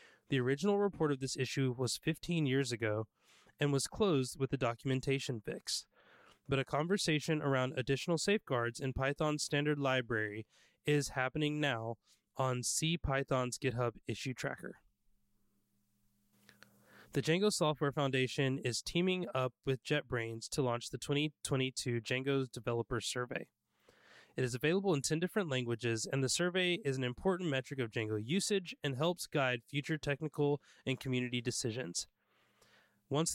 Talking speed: 140 wpm